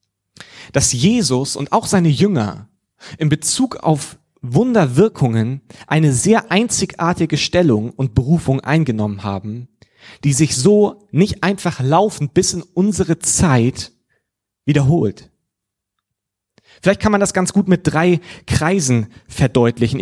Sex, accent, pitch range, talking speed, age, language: male, German, 125-180 Hz, 115 wpm, 30-49, German